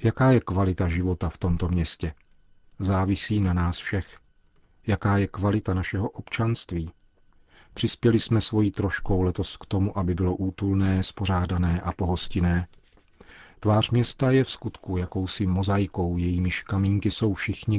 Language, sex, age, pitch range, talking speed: Czech, male, 40-59, 90-105 Hz, 135 wpm